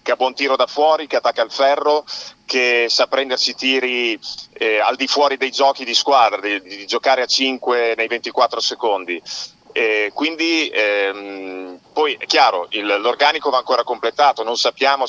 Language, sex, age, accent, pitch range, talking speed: Italian, male, 40-59, native, 115-140 Hz, 175 wpm